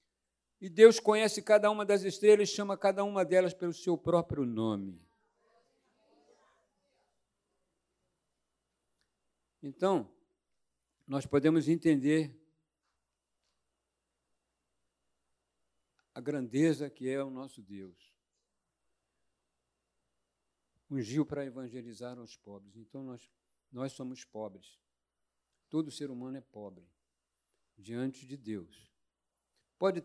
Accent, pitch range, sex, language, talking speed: Brazilian, 100-170 Hz, male, Portuguese, 90 wpm